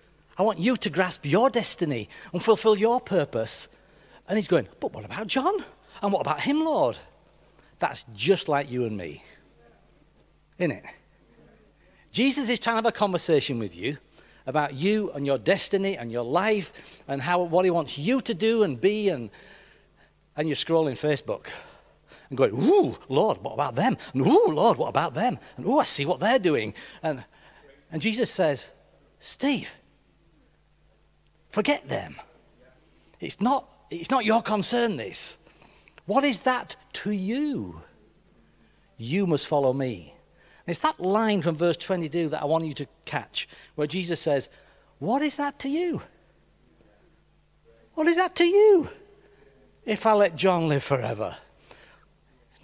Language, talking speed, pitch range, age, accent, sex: English, 160 wpm, 155-245 Hz, 60-79, British, male